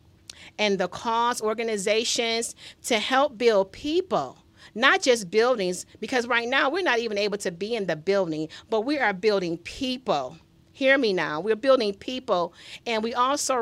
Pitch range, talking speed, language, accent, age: 195-240 Hz, 165 wpm, English, American, 40-59